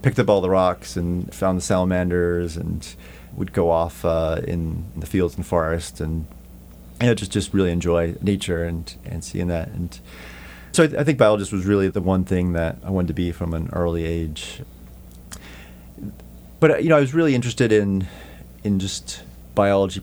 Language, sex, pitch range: English, male, 80-100 Hz